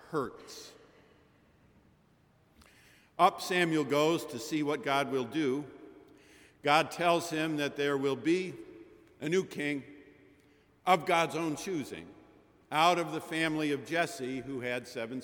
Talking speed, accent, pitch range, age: 130 wpm, American, 135-170 Hz, 50-69